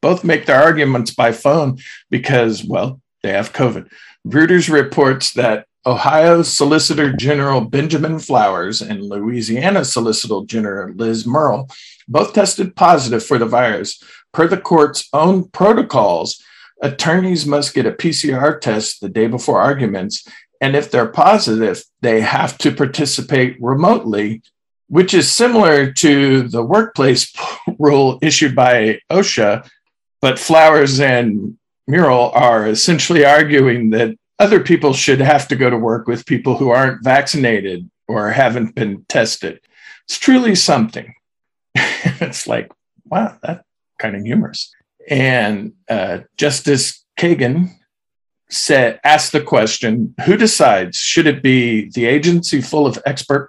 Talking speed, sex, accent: 130 wpm, male, American